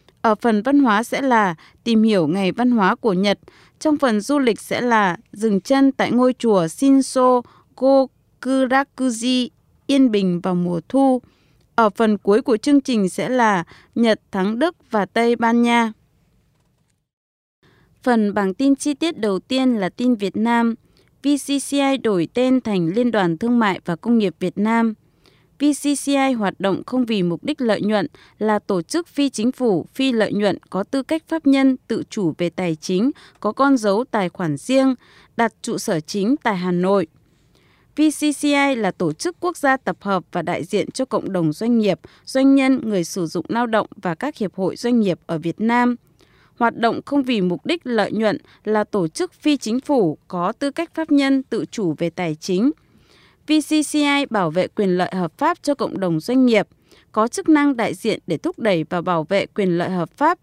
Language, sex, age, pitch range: Japanese, female, 20-39, 190-270 Hz